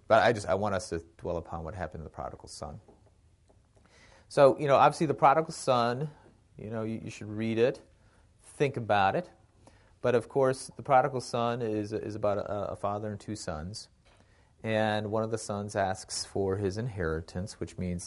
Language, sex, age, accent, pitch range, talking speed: English, male, 40-59, American, 90-110 Hz, 195 wpm